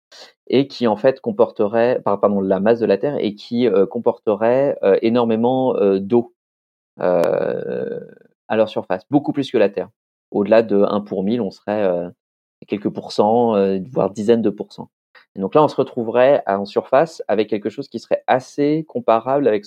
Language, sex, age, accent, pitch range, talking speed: French, male, 30-49, French, 100-125 Hz, 175 wpm